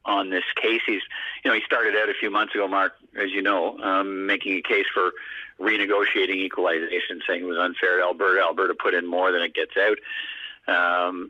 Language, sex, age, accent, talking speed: English, male, 50-69, American, 205 wpm